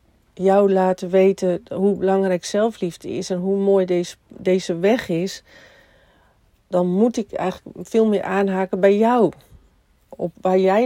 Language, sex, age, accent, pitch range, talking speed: Dutch, female, 40-59, Dutch, 175-210 Hz, 145 wpm